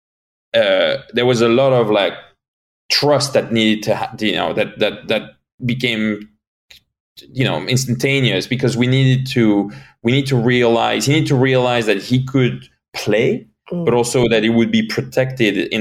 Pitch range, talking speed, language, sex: 110-135 Hz, 170 wpm, English, male